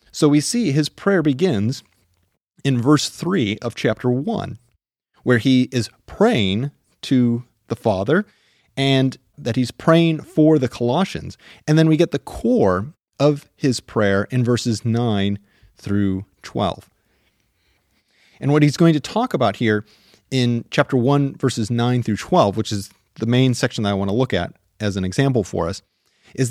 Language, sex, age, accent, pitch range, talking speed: English, male, 30-49, American, 110-150 Hz, 165 wpm